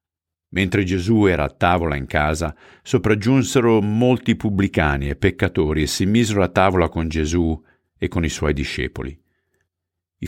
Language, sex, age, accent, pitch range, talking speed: Italian, male, 50-69, native, 75-90 Hz, 145 wpm